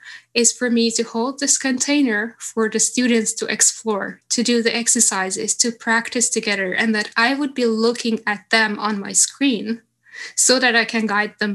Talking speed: 185 wpm